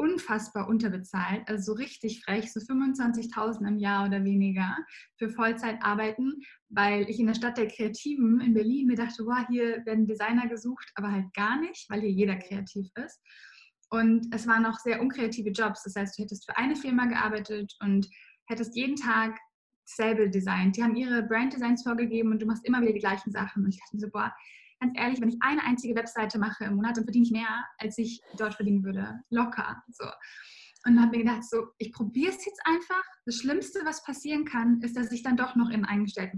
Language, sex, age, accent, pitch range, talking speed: German, female, 10-29, German, 215-245 Hz, 210 wpm